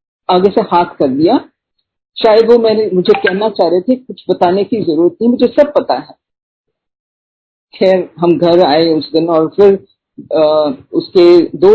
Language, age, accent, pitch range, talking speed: Hindi, 50-69, native, 185-270 Hz, 170 wpm